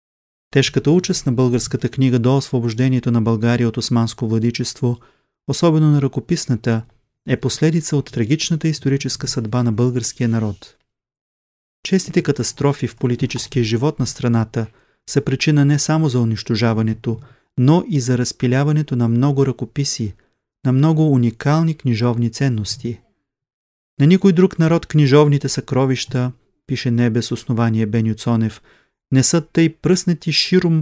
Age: 30-49